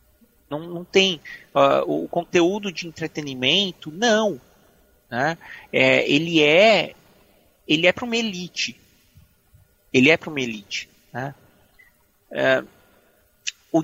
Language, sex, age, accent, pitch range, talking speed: Portuguese, male, 40-59, Brazilian, 145-190 Hz, 115 wpm